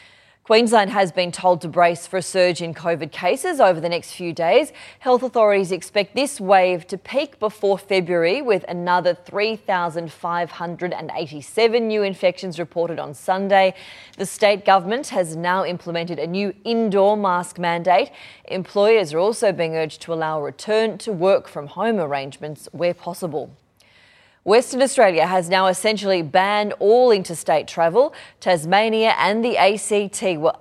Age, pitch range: 20-39, 170-215 Hz